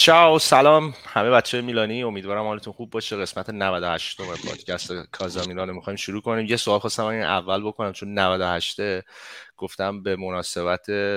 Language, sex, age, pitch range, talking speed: Persian, male, 30-49, 90-105 Hz, 125 wpm